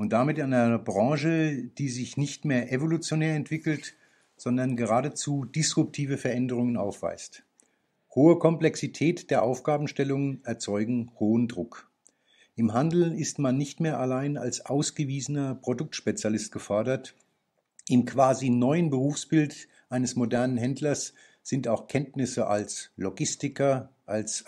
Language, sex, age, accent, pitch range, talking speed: Italian, male, 50-69, German, 120-145 Hz, 115 wpm